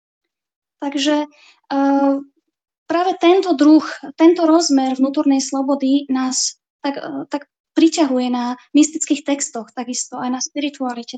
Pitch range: 275-325 Hz